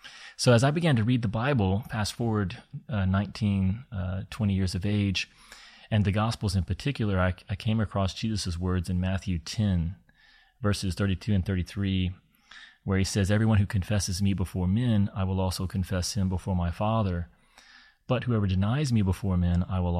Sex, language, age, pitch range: male, English, 30-49, 90-110 Hz